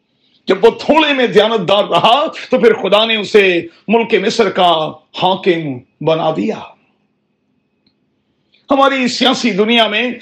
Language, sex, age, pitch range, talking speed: Urdu, male, 50-69, 200-240 Hz, 100 wpm